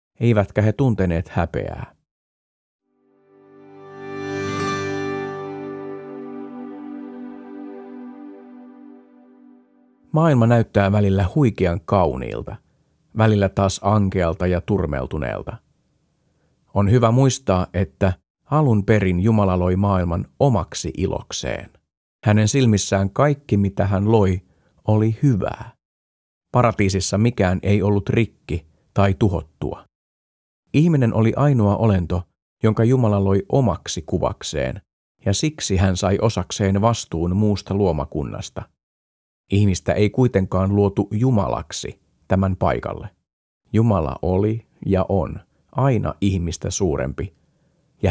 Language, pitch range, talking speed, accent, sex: Finnish, 90-115 Hz, 90 wpm, native, male